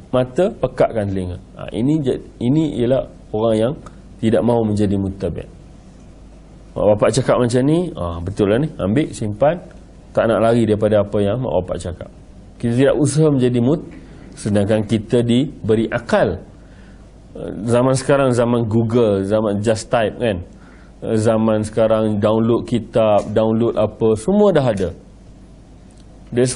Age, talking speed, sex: 30-49, 140 wpm, male